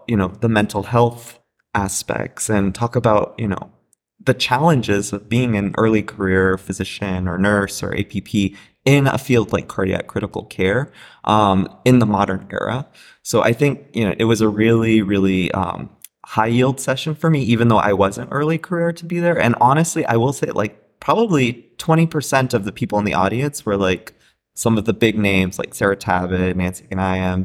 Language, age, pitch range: English, 20-39, 100-145 Hz